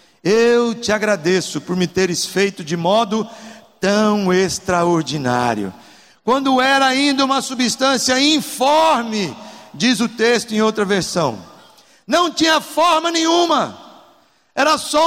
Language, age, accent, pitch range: Portuguese, 60-79, Brazilian, 195-270 Hz